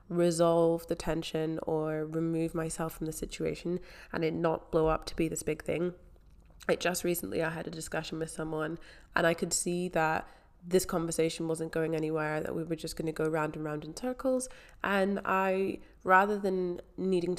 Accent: British